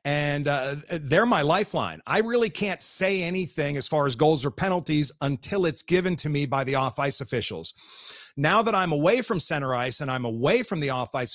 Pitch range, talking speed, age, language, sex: 135-165 Hz, 200 wpm, 40-59, English, male